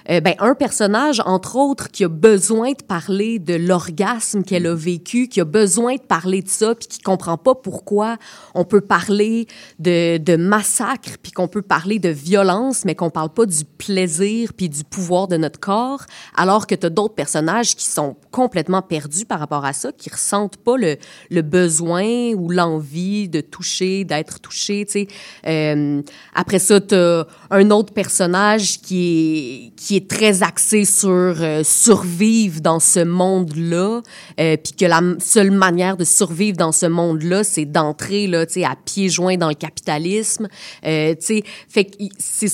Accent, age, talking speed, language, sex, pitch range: Canadian, 30-49, 170 wpm, French, female, 165-205 Hz